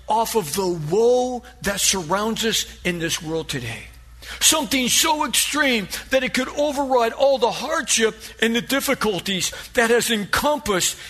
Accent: American